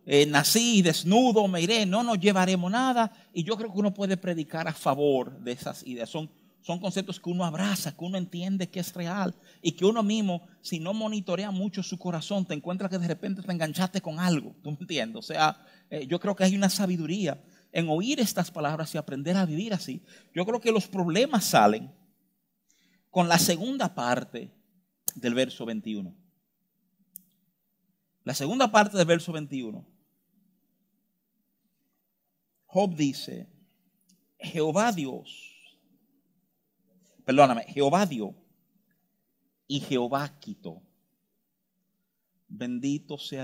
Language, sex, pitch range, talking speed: Spanish, male, 170-210 Hz, 145 wpm